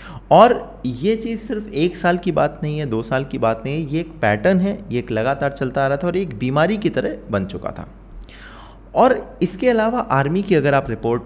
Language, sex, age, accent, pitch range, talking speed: Hindi, male, 20-39, native, 105-155 Hz, 230 wpm